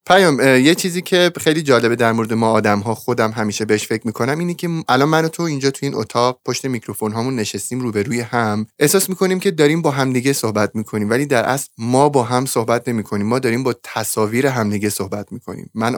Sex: male